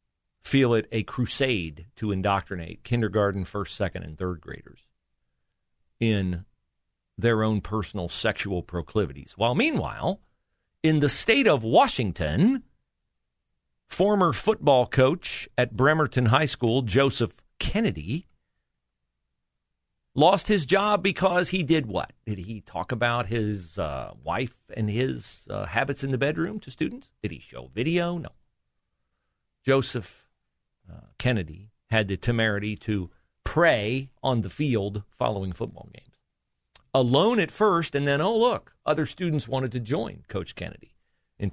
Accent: American